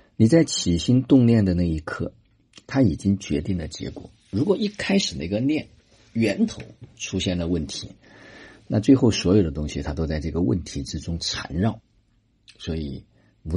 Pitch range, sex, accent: 75-110 Hz, male, native